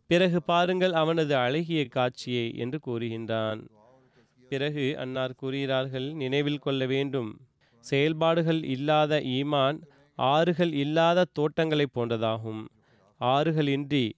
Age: 30-49